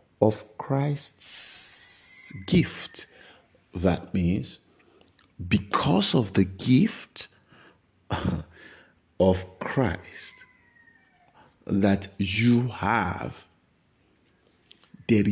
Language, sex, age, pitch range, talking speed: English, male, 50-69, 95-145 Hz, 60 wpm